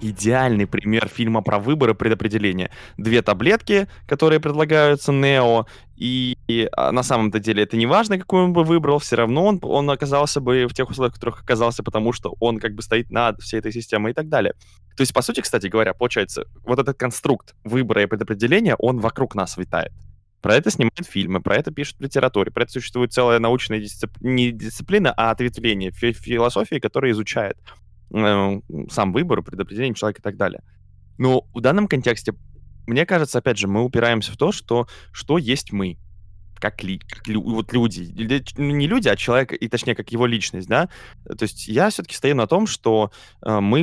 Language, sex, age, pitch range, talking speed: Russian, male, 20-39, 105-130 Hz, 190 wpm